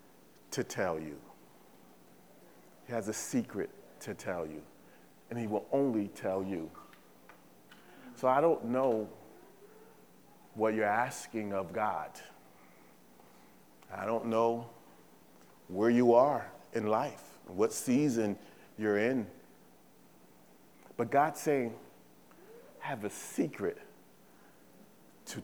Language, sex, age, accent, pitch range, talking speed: English, male, 40-59, American, 90-130 Hz, 105 wpm